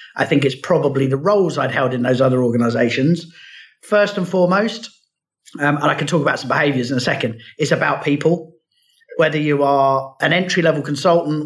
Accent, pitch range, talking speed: British, 130-165 Hz, 185 wpm